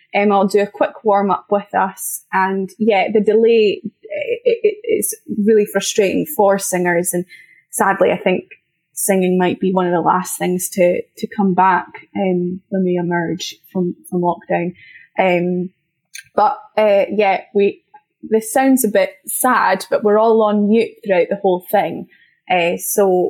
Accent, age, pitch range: British, 10-29, 190-220 Hz